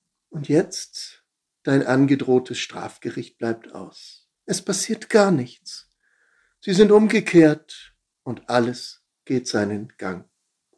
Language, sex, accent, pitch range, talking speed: German, male, German, 115-140 Hz, 105 wpm